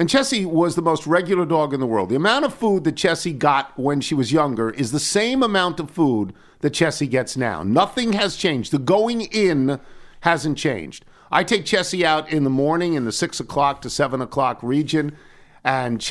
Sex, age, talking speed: male, 50-69, 205 wpm